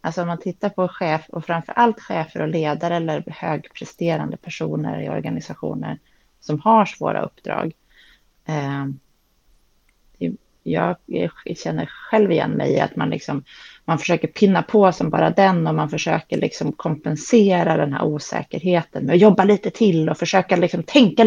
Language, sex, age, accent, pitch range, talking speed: Swedish, female, 30-49, native, 155-190 Hz, 145 wpm